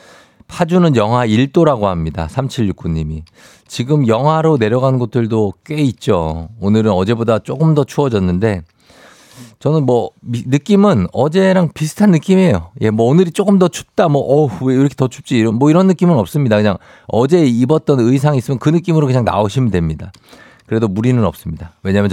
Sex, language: male, Korean